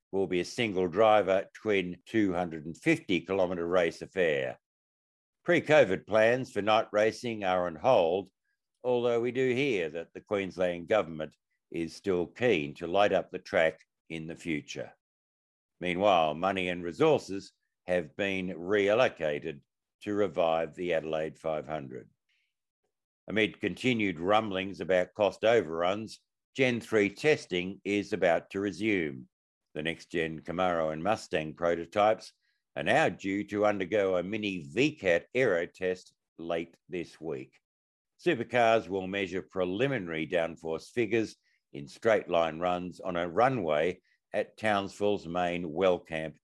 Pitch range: 80-105 Hz